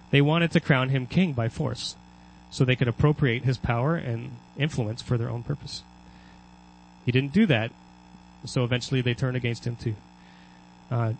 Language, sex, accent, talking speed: English, male, American, 170 wpm